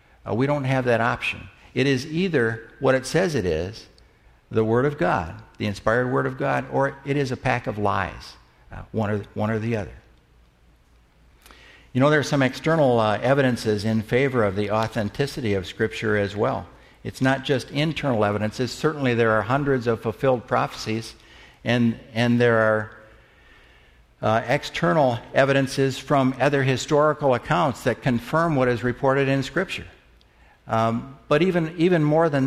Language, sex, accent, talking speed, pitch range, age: English, male, American, 165 wpm, 115-145 Hz, 60-79